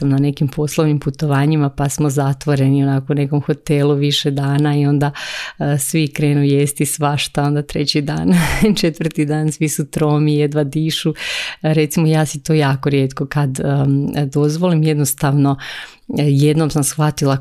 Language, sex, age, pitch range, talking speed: Croatian, female, 30-49, 140-155 Hz, 140 wpm